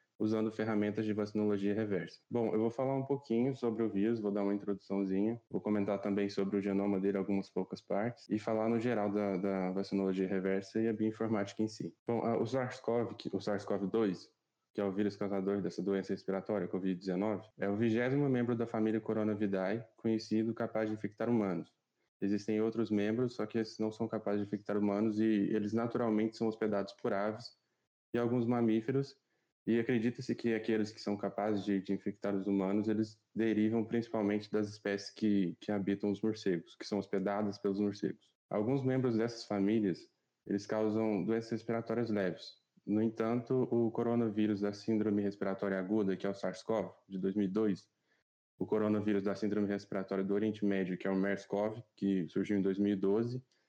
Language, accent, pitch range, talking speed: Portuguese, Brazilian, 100-115 Hz, 175 wpm